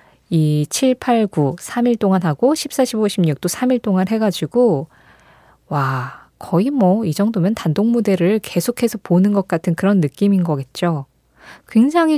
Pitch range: 170-235 Hz